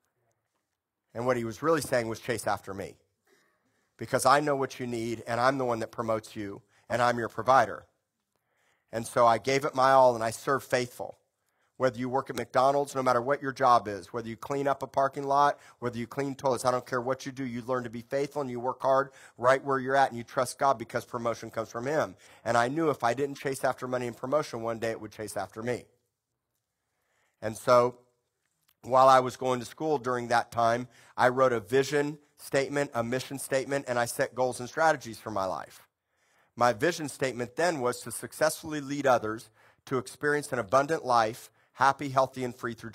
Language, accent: English, American